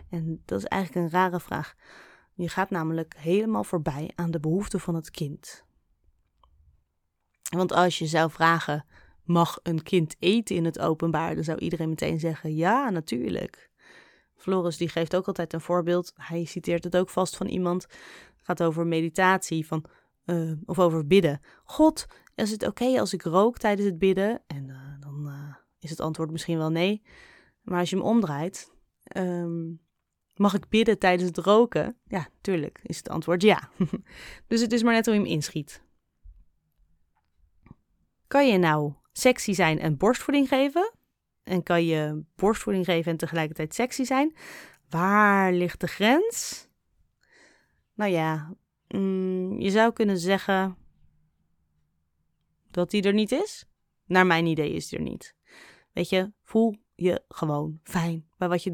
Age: 20-39